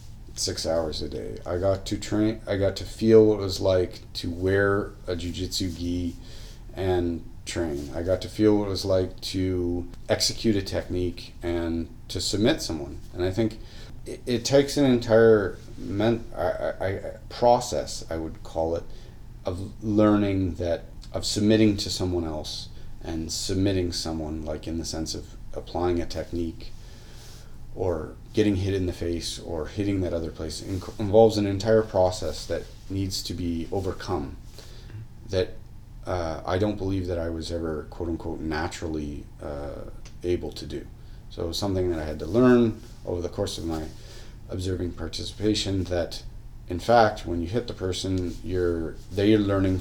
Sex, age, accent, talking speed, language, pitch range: male, 30-49, American, 170 wpm, English, 85-110 Hz